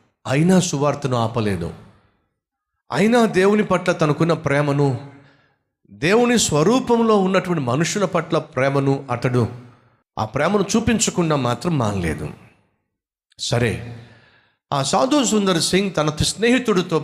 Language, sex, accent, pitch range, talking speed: Telugu, male, native, 130-195 Hz, 95 wpm